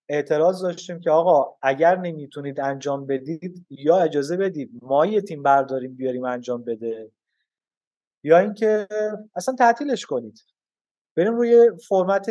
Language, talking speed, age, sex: Persian, 120 wpm, 30-49, male